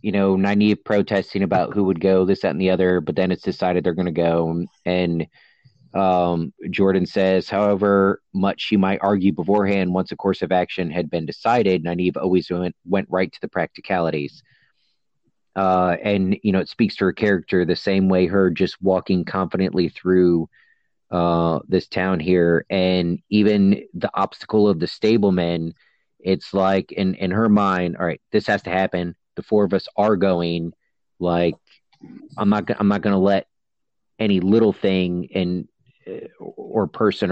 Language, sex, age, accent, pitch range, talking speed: English, male, 30-49, American, 90-100 Hz, 170 wpm